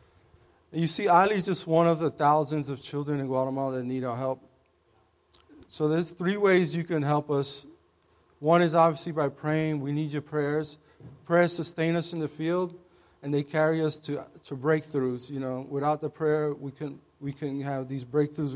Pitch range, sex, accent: 140-160 Hz, male, American